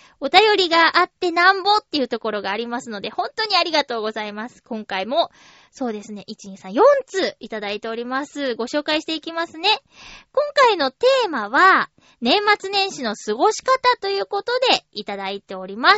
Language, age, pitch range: Japanese, 20-39, 265-410 Hz